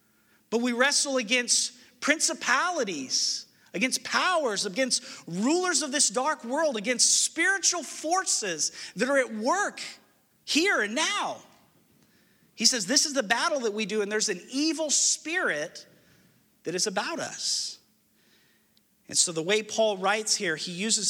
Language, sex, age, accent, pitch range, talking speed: English, male, 40-59, American, 190-265 Hz, 140 wpm